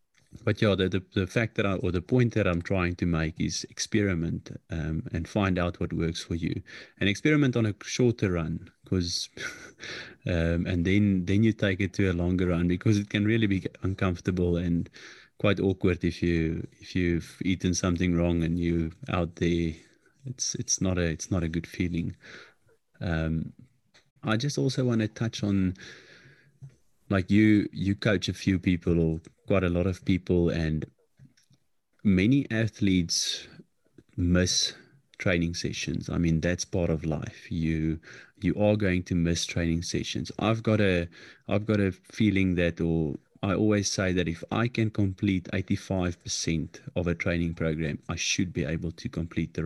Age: 30-49